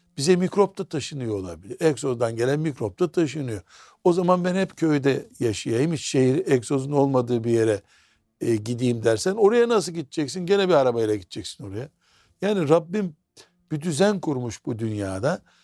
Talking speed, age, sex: 150 wpm, 60-79, male